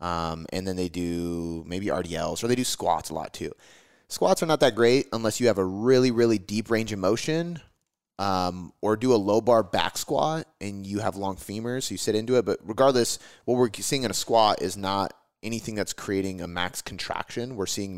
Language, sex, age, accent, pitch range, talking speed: English, male, 30-49, American, 90-115 Hz, 215 wpm